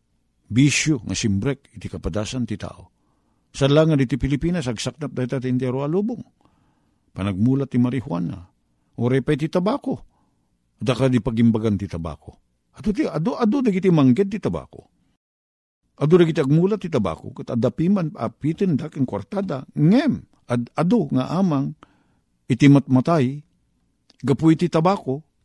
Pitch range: 115-165 Hz